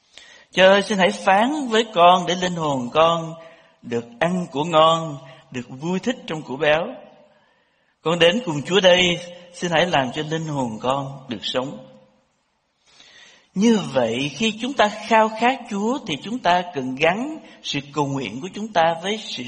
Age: 60-79